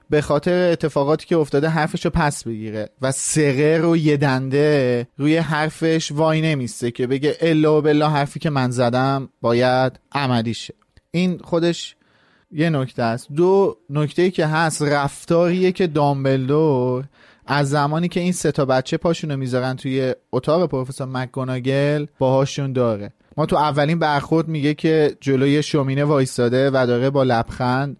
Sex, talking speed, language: male, 145 wpm, Persian